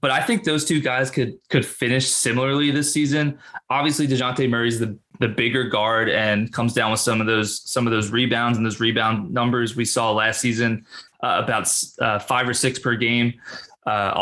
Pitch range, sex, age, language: 120-140 Hz, male, 20-39, English